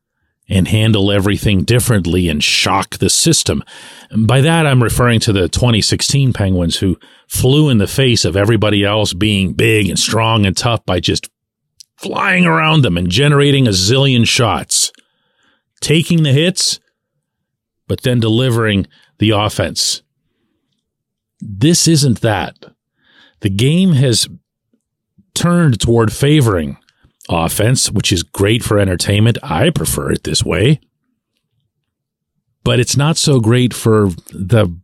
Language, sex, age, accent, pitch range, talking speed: English, male, 40-59, American, 95-130 Hz, 130 wpm